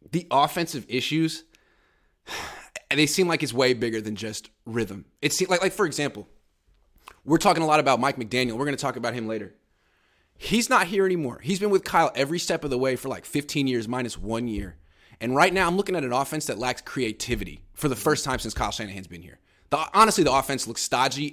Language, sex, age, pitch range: English, male, 20-39, 110-170 Hz